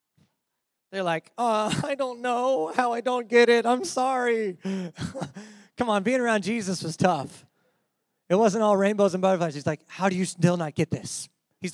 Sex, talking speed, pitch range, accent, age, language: male, 185 wpm, 165-220 Hz, American, 20-39, English